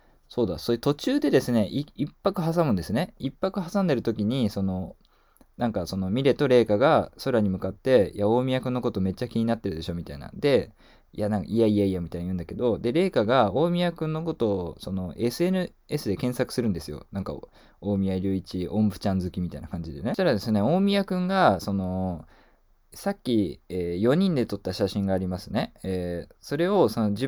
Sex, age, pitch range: male, 20-39, 95-150 Hz